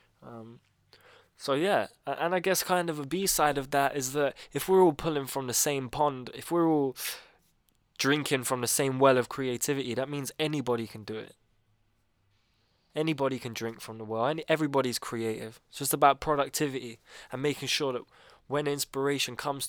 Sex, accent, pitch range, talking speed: male, British, 115-140 Hz, 180 wpm